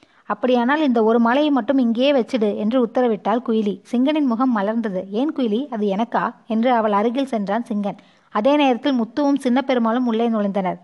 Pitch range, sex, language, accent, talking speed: 220-265 Hz, female, Tamil, native, 155 wpm